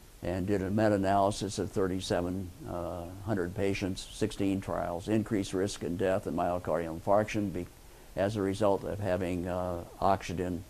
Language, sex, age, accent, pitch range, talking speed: English, male, 50-69, American, 90-105 Hz, 135 wpm